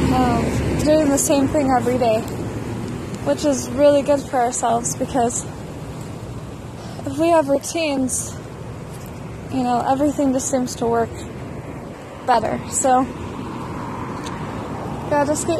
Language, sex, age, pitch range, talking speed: English, female, 20-39, 245-295 Hz, 110 wpm